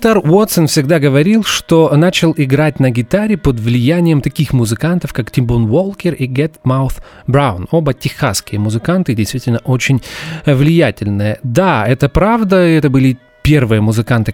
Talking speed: 135 wpm